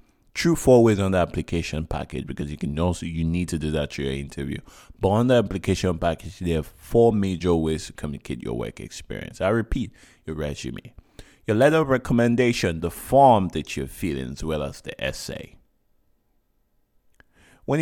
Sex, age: male, 20-39